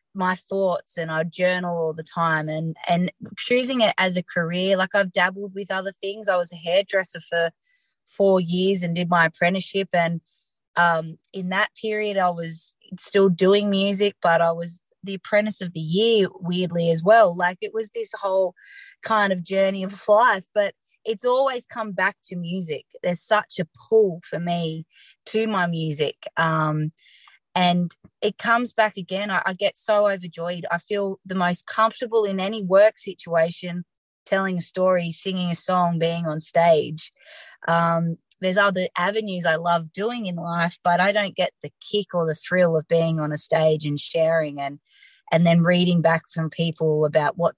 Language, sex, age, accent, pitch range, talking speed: English, female, 20-39, Australian, 165-200 Hz, 180 wpm